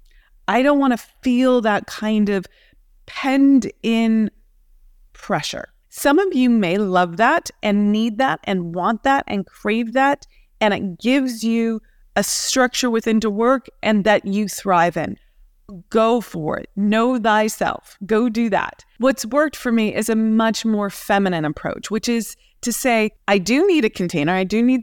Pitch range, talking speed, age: 200-255 Hz, 170 wpm, 30-49